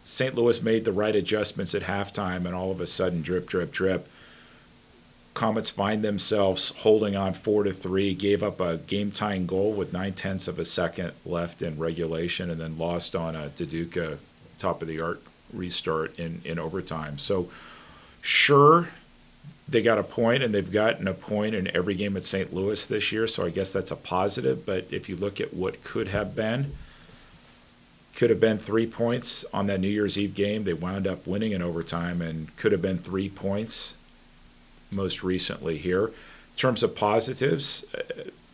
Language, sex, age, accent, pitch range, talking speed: English, male, 40-59, American, 85-105 Hz, 175 wpm